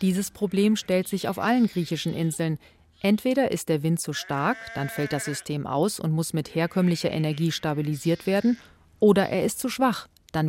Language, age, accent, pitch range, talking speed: German, 40-59, German, 155-205 Hz, 185 wpm